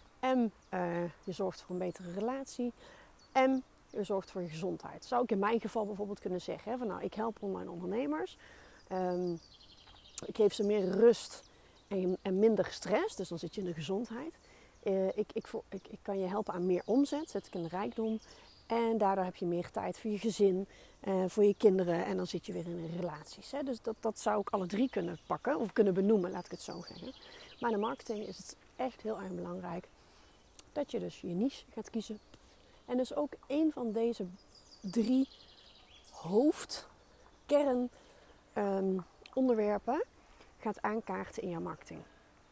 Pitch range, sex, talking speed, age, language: 190-230 Hz, female, 190 wpm, 40-59, Dutch